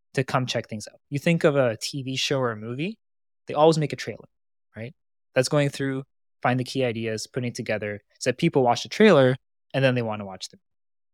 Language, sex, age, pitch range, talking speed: English, male, 20-39, 115-140 Hz, 230 wpm